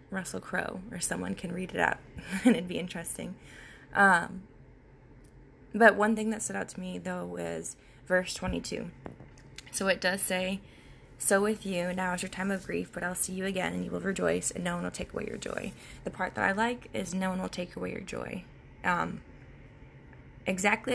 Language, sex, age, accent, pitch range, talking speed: English, female, 20-39, American, 170-205 Hz, 200 wpm